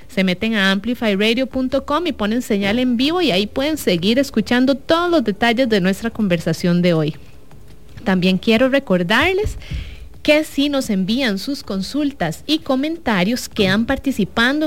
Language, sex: English, female